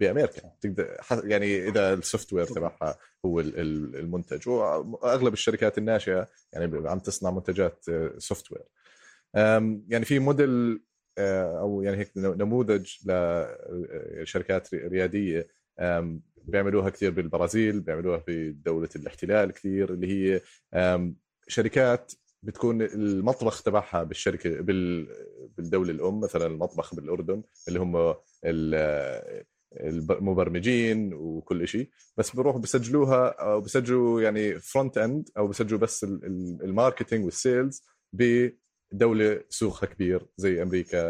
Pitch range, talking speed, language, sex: 90-115 Hz, 95 wpm, Arabic, male